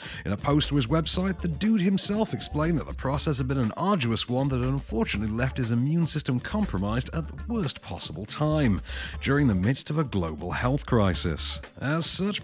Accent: British